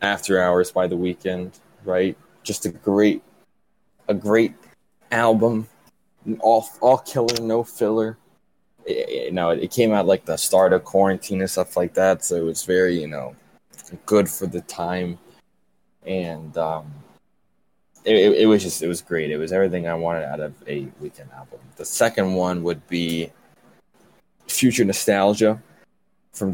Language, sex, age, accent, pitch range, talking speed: English, male, 20-39, American, 85-100 Hz, 155 wpm